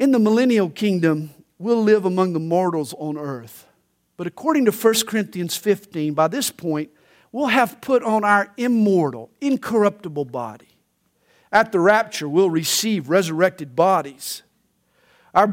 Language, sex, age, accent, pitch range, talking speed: English, male, 50-69, American, 165-230 Hz, 140 wpm